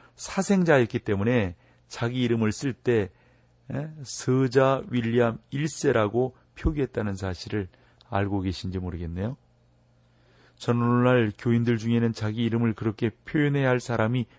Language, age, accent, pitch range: Korean, 30-49, native, 100-120 Hz